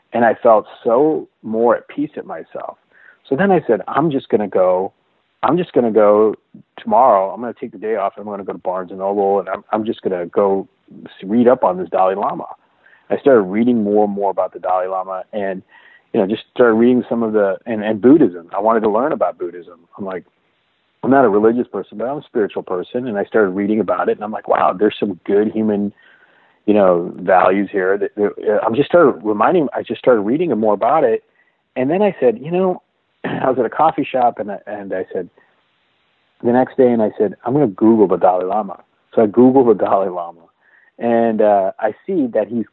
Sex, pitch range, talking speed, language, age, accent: male, 100-140 Hz, 230 wpm, English, 30-49, American